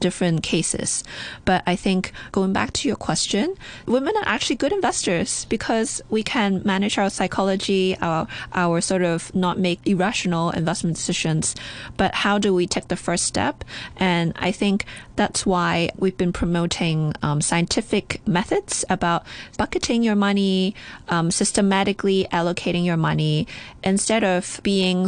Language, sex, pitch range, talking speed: English, female, 170-210 Hz, 145 wpm